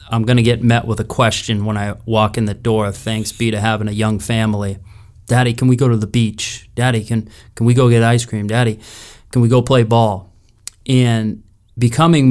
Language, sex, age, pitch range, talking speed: English, male, 30-49, 110-125 Hz, 215 wpm